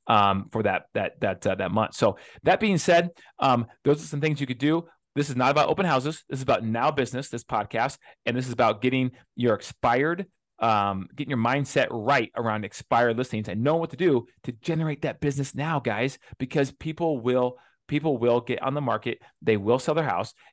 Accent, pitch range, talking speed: American, 120-150 Hz, 215 wpm